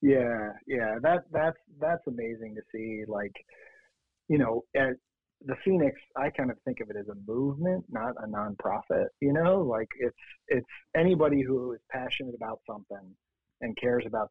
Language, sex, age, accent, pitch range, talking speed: English, male, 50-69, American, 105-135 Hz, 170 wpm